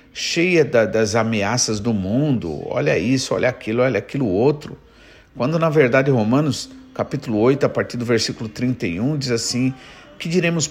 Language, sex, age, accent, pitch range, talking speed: Portuguese, male, 50-69, Brazilian, 100-150 Hz, 150 wpm